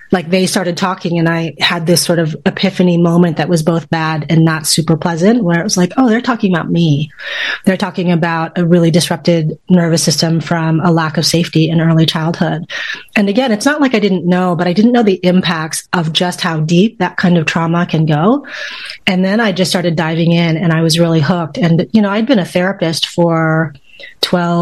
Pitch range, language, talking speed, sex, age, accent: 160-180 Hz, English, 220 wpm, female, 30-49, American